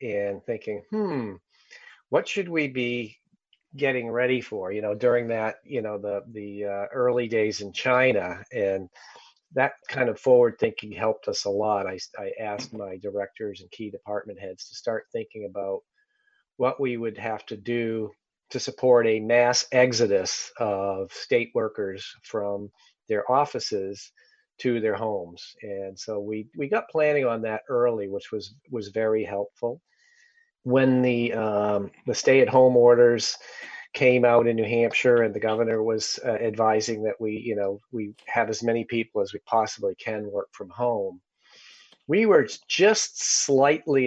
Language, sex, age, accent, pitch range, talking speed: English, male, 40-59, American, 105-130 Hz, 160 wpm